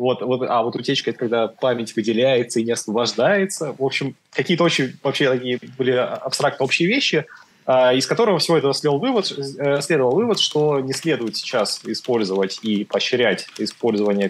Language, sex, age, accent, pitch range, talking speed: Russian, male, 20-39, native, 115-155 Hz, 150 wpm